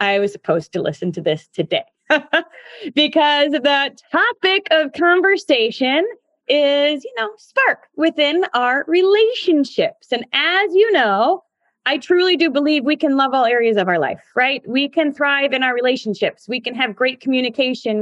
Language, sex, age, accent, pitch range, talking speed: English, female, 20-39, American, 230-325 Hz, 160 wpm